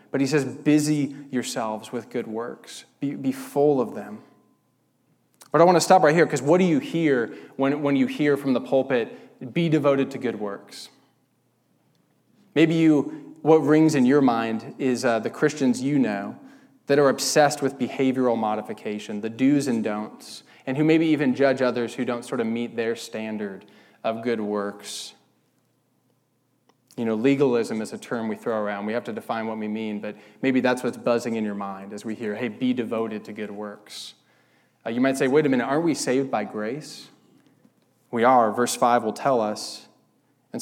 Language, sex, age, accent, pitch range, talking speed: English, male, 20-39, American, 115-150 Hz, 190 wpm